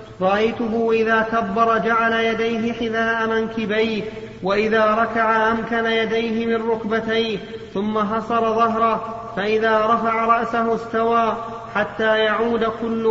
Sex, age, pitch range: male, 30-49, 225-230 Hz